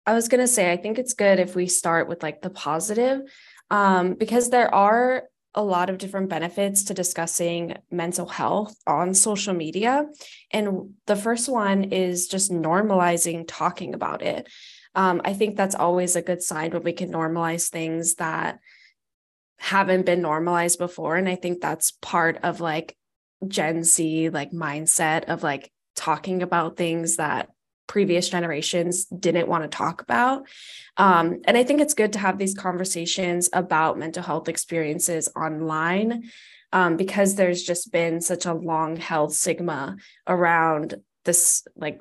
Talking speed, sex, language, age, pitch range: 160 wpm, female, English, 10-29, 165-195 Hz